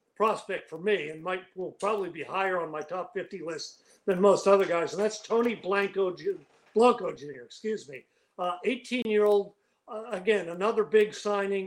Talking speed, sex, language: 170 wpm, male, English